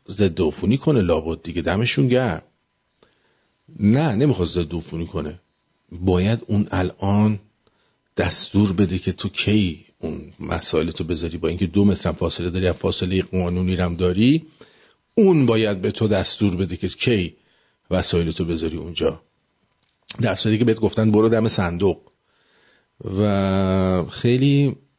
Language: English